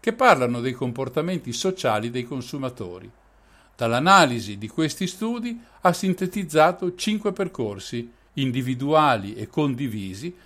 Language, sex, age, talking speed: Italian, male, 50-69, 105 wpm